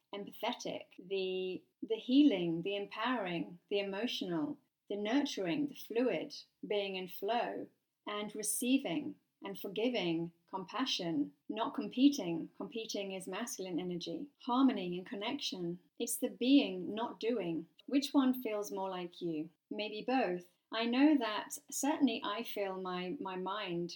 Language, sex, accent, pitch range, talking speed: English, female, British, 185-250 Hz, 130 wpm